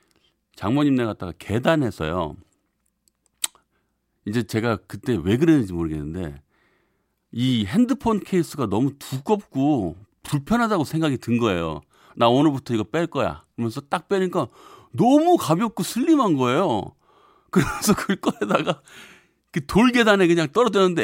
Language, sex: Korean, male